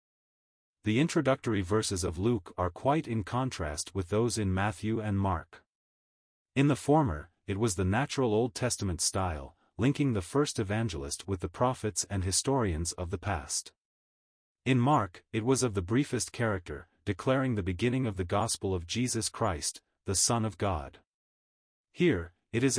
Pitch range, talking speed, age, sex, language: 90-125 Hz, 160 wpm, 30-49, male, English